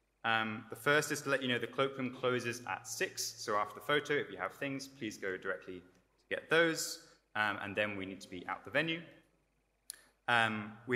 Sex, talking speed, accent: male, 215 wpm, British